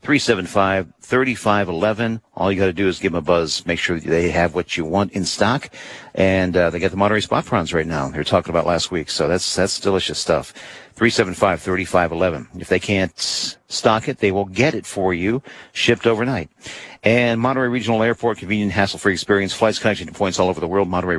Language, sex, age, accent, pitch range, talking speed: English, male, 50-69, American, 90-110 Hz, 210 wpm